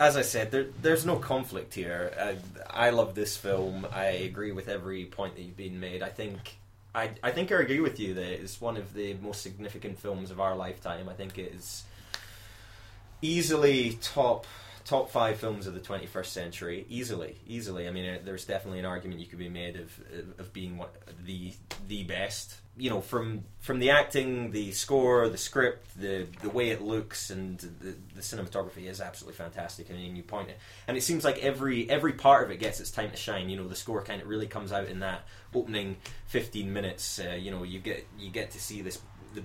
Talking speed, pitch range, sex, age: 210 wpm, 95-110 Hz, male, 20-39